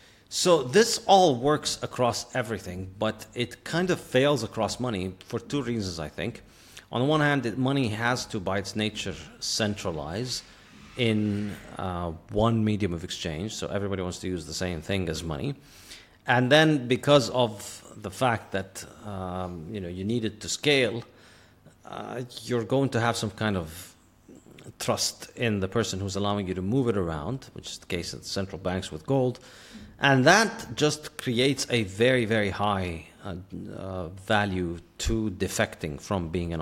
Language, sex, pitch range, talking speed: English, male, 90-120 Hz, 170 wpm